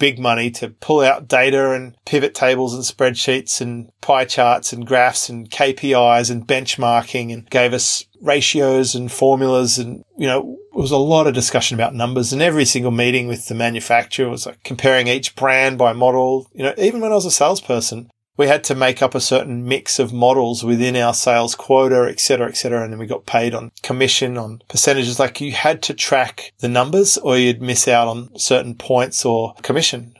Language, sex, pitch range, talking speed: English, male, 120-140 Hz, 205 wpm